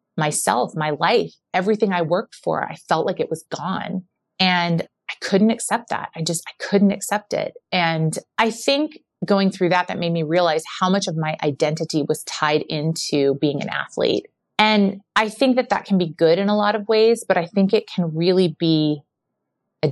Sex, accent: female, American